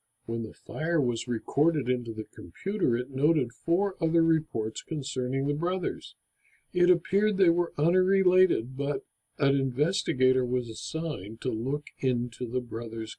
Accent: American